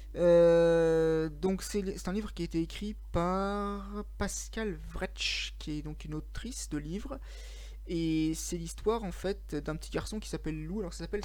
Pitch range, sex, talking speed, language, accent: 160-205 Hz, male, 180 wpm, French, French